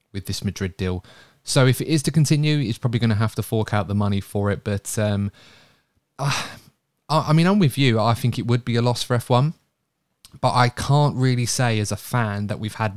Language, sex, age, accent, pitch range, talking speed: English, male, 20-39, British, 105-125 Hz, 230 wpm